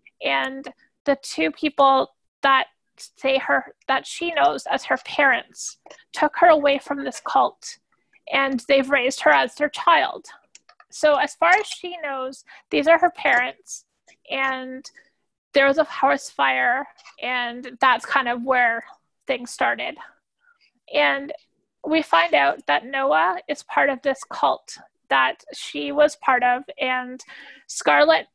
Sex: female